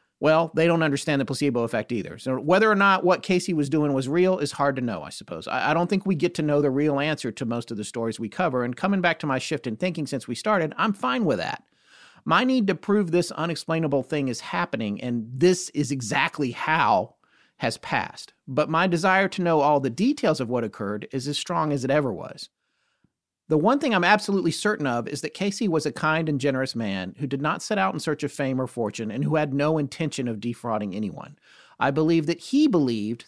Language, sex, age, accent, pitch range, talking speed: English, male, 40-59, American, 140-190 Hz, 235 wpm